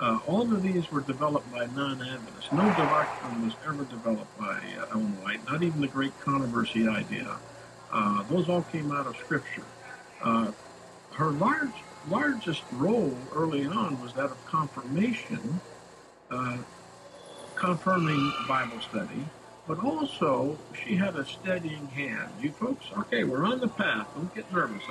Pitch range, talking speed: 120-180 Hz, 150 wpm